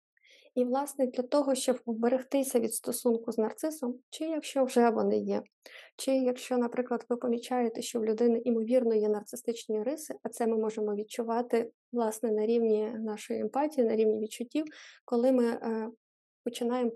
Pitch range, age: 225-255 Hz, 20-39